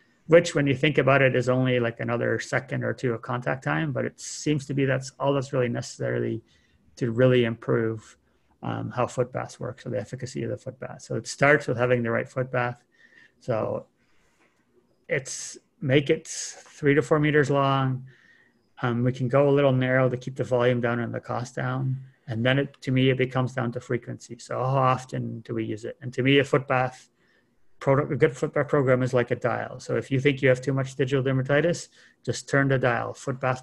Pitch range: 120-135 Hz